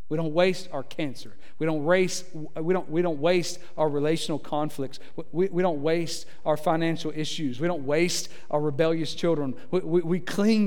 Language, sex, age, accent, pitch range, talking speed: English, male, 50-69, American, 130-175 Hz, 185 wpm